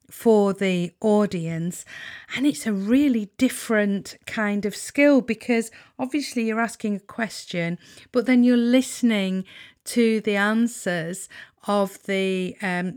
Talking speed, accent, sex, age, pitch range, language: 125 wpm, British, female, 40-59, 190-240 Hz, English